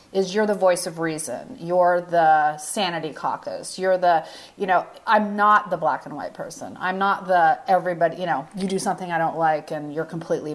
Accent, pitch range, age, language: American, 160-215 Hz, 30-49, English